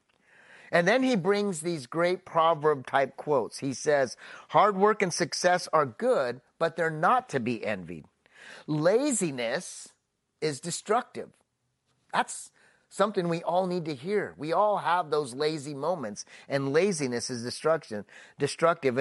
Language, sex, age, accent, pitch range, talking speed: English, male, 30-49, American, 140-185 Hz, 140 wpm